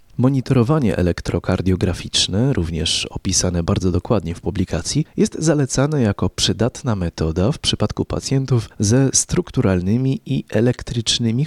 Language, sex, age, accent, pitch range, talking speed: Polish, male, 30-49, native, 90-120 Hz, 105 wpm